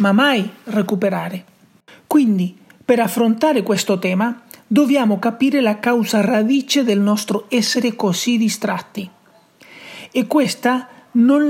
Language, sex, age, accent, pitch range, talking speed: Italian, male, 40-59, native, 200-245 Hz, 110 wpm